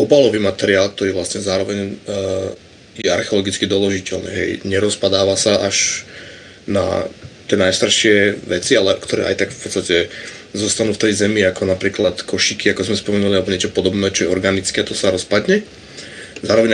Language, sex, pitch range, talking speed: Slovak, male, 95-110 Hz, 155 wpm